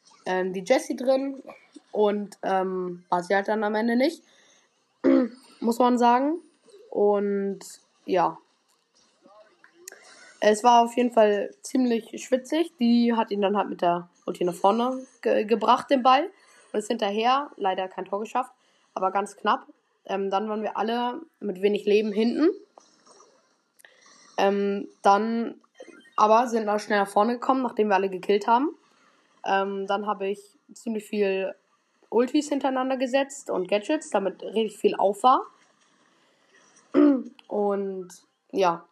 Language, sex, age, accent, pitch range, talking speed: German, female, 20-39, German, 200-260 Hz, 135 wpm